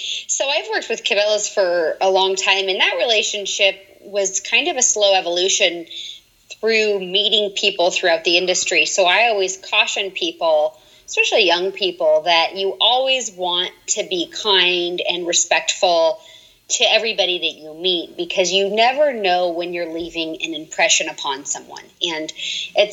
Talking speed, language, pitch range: 155 wpm, English, 175-210 Hz